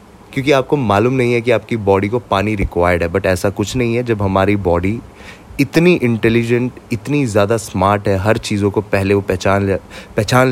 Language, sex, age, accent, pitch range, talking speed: Hindi, male, 20-39, native, 100-130 Hz, 190 wpm